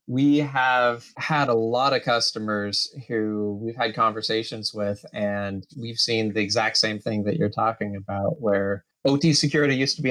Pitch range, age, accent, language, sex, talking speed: 105-125 Hz, 20-39, American, English, male, 170 wpm